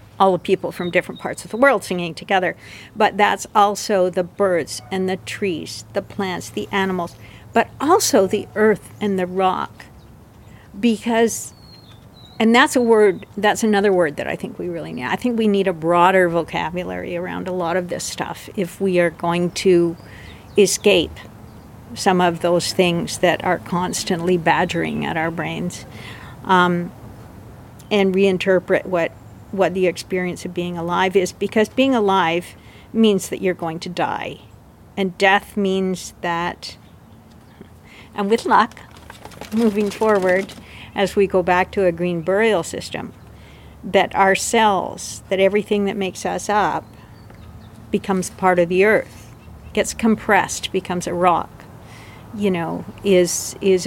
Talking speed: 150 wpm